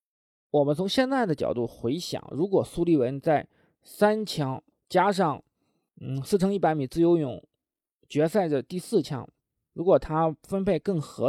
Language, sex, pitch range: Chinese, male, 145-205 Hz